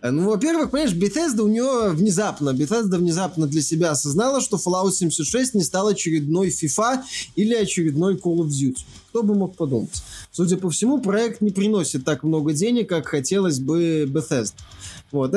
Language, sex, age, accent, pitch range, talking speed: Russian, male, 20-39, native, 155-215 Hz, 160 wpm